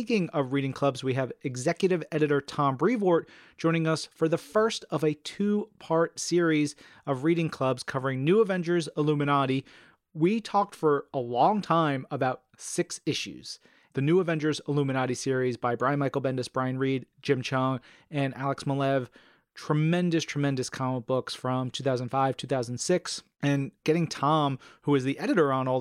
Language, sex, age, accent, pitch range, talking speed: English, male, 30-49, American, 130-155 Hz, 155 wpm